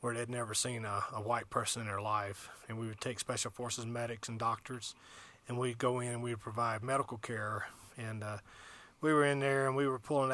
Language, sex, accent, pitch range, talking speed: English, male, American, 115-135 Hz, 225 wpm